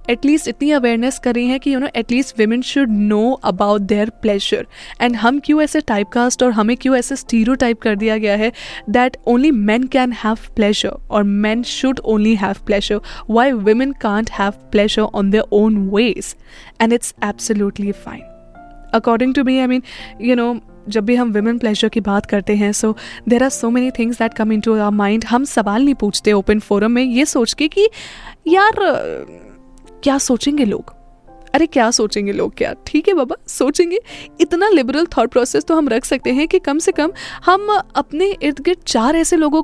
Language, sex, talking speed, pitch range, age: Hindi, female, 195 wpm, 220-290 Hz, 10-29